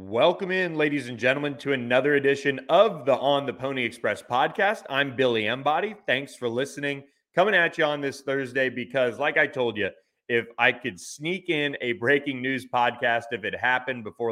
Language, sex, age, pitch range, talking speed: English, male, 30-49, 120-140 Hz, 190 wpm